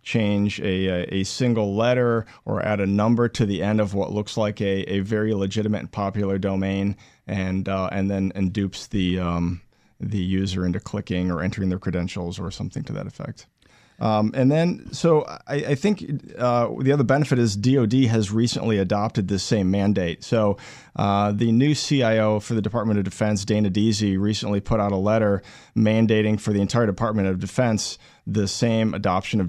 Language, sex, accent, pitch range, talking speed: English, male, American, 100-120 Hz, 185 wpm